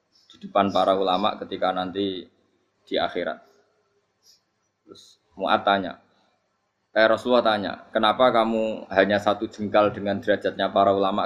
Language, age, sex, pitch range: Indonesian, 20-39, male, 100-120 Hz